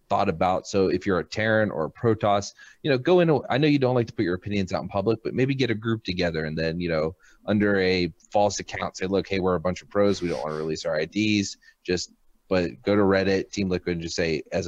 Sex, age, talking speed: male, 30-49, 275 wpm